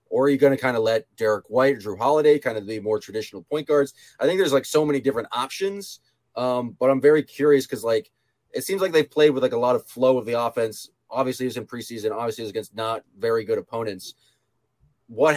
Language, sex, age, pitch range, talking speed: English, male, 20-39, 115-145 Hz, 245 wpm